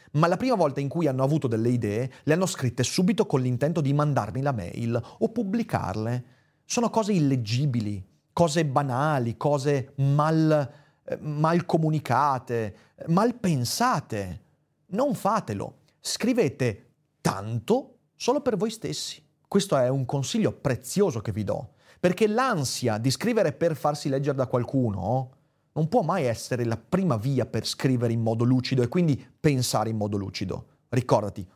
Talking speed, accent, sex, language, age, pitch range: 145 wpm, native, male, Italian, 30-49, 120-160 Hz